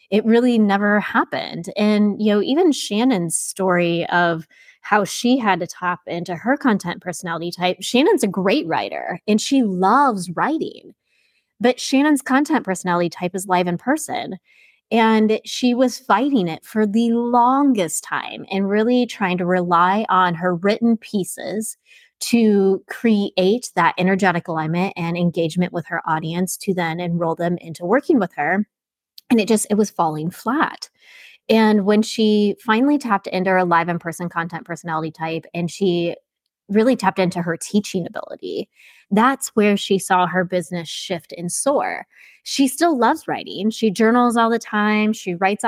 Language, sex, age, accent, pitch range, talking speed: English, female, 20-39, American, 180-220 Hz, 160 wpm